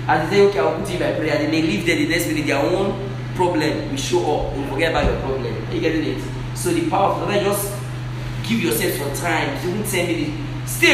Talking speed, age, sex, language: 250 wpm, 30-49, male, English